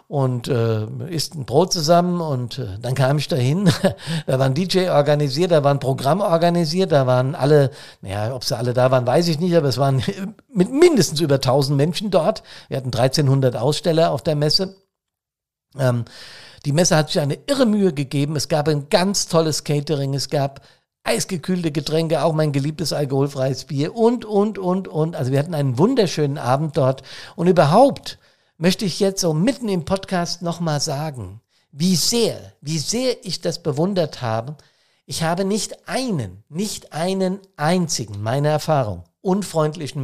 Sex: male